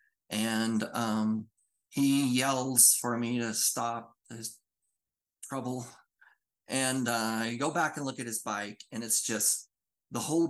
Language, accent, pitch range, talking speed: English, American, 110-135 Hz, 145 wpm